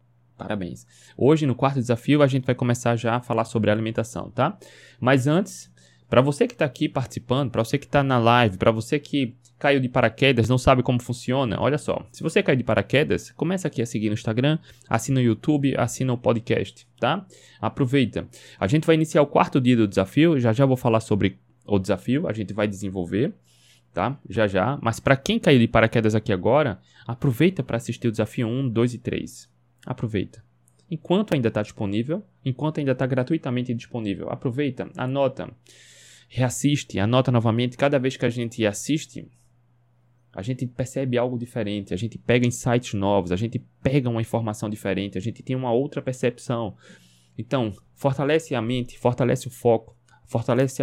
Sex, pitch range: male, 110-135 Hz